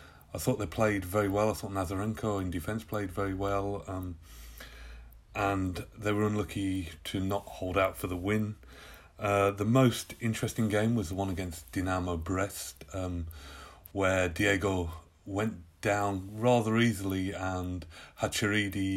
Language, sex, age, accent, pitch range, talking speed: English, male, 30-49, British, 90-105 Hz, 145 wpm